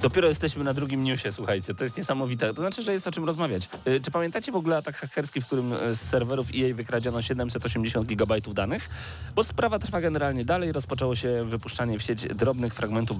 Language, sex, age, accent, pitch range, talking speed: Polish, male, 40-59, native, 110-145 Hz, 195 wpm